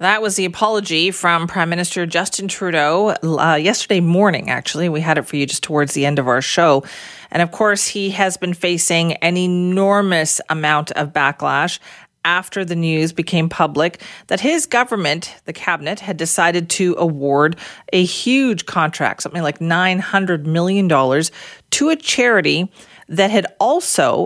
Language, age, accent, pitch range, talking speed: English, 40-59, American, 150-195 Hz, 160 wpm